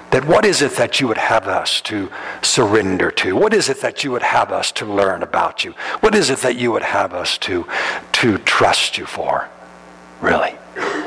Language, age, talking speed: English, 60-79, 205 wpm